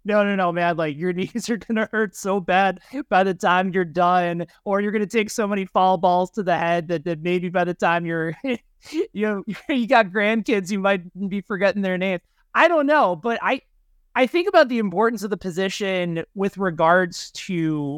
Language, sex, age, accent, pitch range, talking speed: English, male, 30-49, American, 160-210 Hz, 205 wpm